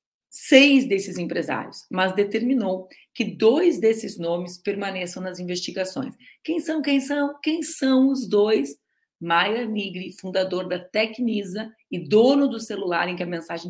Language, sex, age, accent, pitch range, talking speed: Portuguese, female, 40-59, Brazilian, 175-235 Hz, 145 wpm